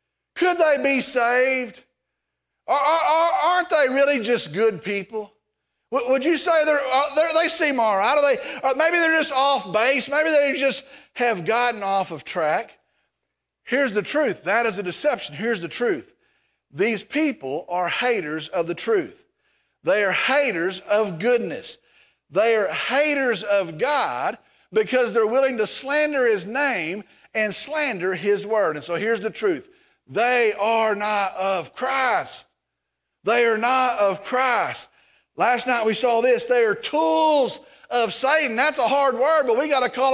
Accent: American